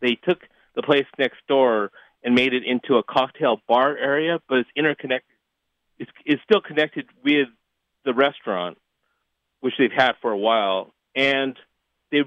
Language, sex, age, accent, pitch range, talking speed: English, male, 30-49, American, 105-140 Hz, 155 wpm